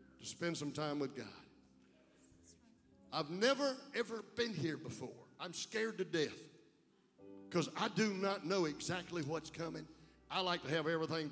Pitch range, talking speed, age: 150-210 Hz, 150 wpm, 50-69